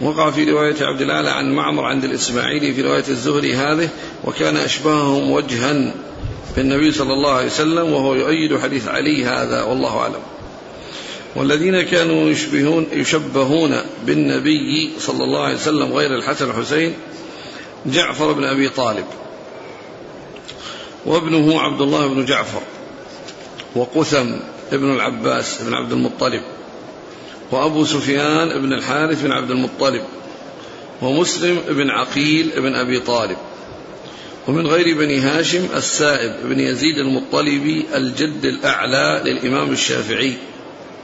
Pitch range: 135-160 Hz